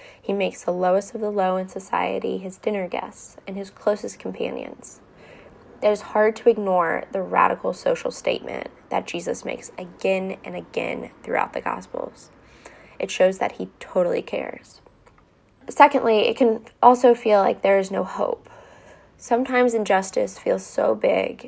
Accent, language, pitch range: American, English, 185-240 Hz